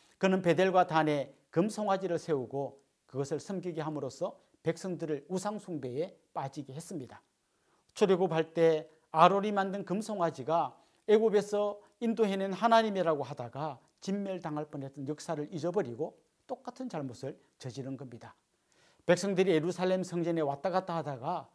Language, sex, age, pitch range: Korean, male, 40-59, 145-195 Hz